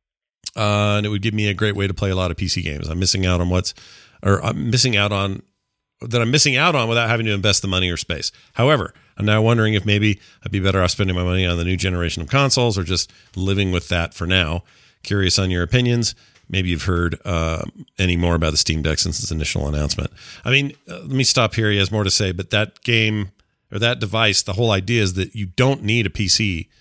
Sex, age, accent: male, 40-59, American